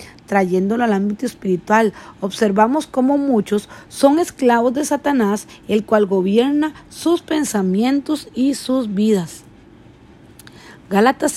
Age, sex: 40-59, female